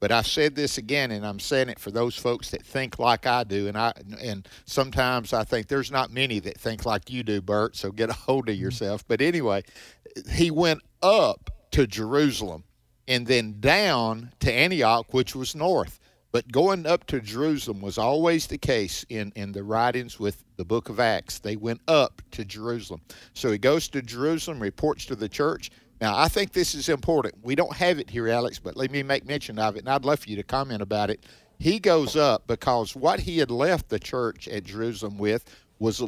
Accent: American